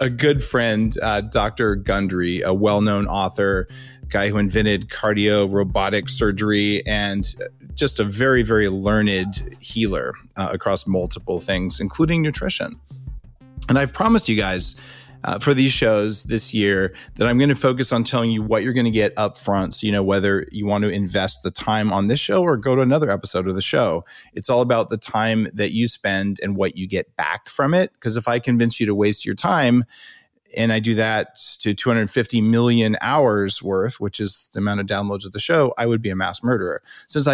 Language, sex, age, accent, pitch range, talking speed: English, male, 30-49, American, 100-130 Hz, 200 wpm